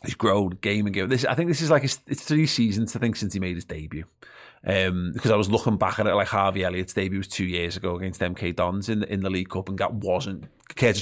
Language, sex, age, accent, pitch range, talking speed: English, male, 30-49, British, 95-120 Hz, 265 wpm